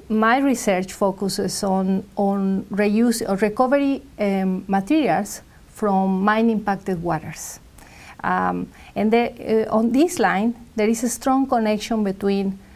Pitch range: 190-235 Hz